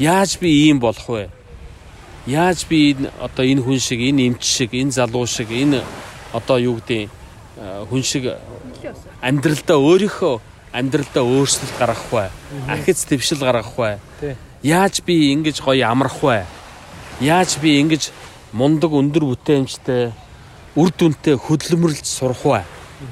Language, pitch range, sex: Korean, 120-145 Hz, male